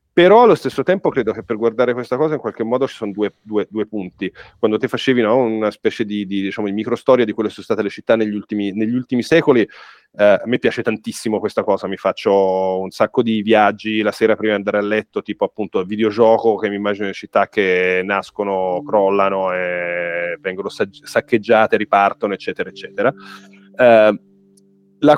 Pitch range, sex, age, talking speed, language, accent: 100-150 Hz, male, 30-49, 200 wpm, Italian, native